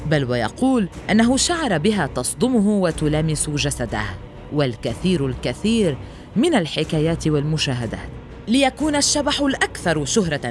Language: Arabic